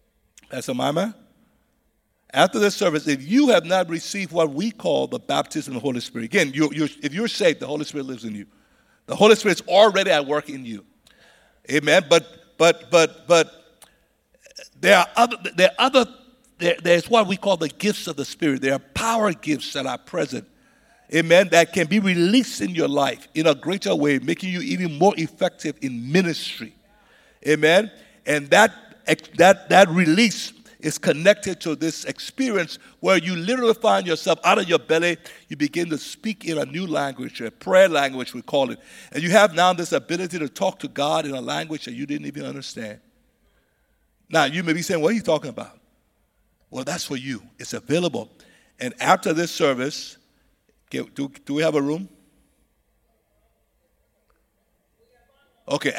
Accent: American